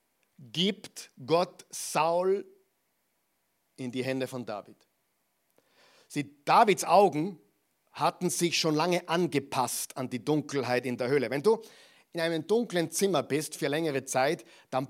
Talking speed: 135 wpm